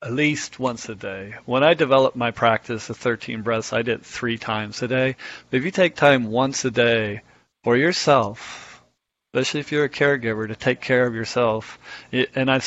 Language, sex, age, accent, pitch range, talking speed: English, male, 40-59, American, 115-145 Hz, 195 wpm